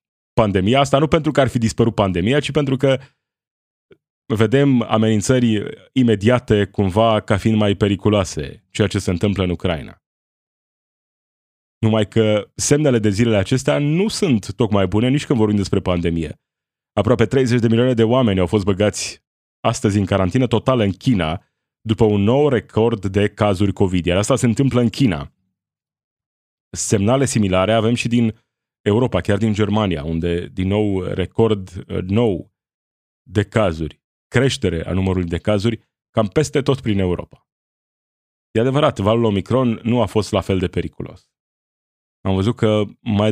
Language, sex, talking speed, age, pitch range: Romanian, male, 150 wpm, 30-49, 100-120 Hz